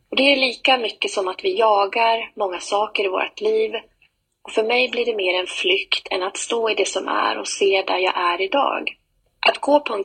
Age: 30-49